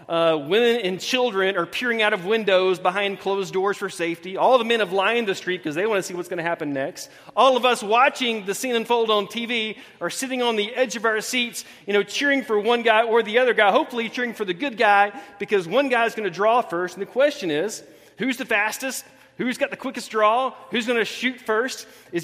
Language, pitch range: English, 200-260 Hz